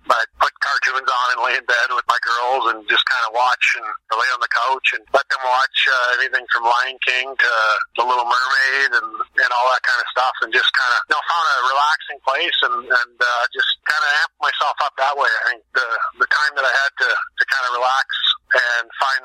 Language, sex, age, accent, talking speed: English, male, 50-69, American, 235 wpm